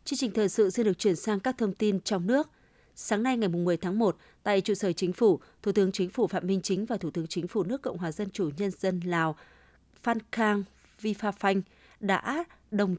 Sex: female